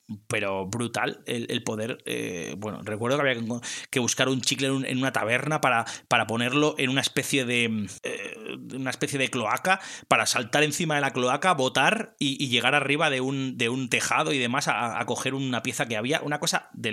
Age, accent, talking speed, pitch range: 30-49, Spanish, 200 wpm, 115-145 Hz